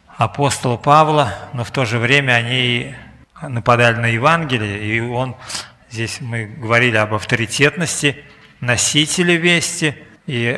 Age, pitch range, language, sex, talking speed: 50-69, 120-145 Hz, Russian, male, 120 wpm